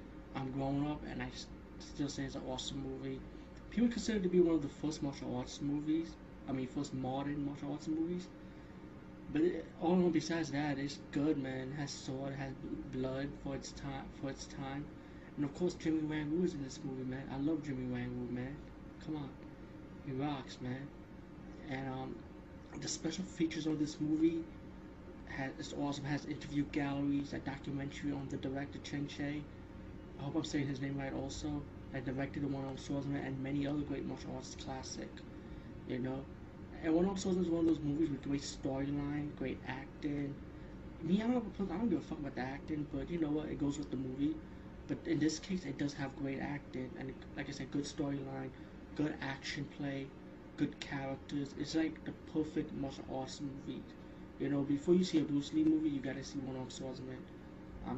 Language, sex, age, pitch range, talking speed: English, male, 20-39, 135-155 Hz, 205 wpm